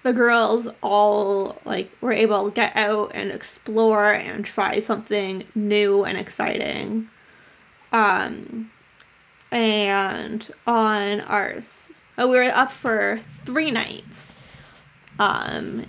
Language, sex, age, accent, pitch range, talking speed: English, female, 20-39, American, 215-265 Hz, 105 wpm